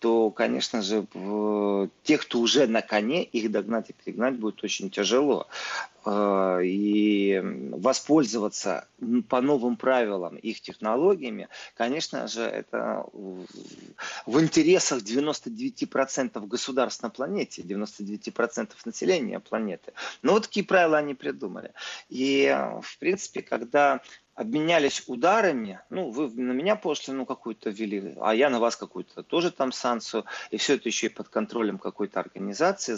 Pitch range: 105-150 Hz